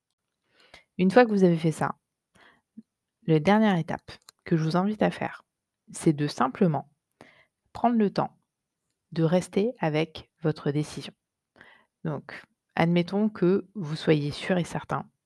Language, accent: French, French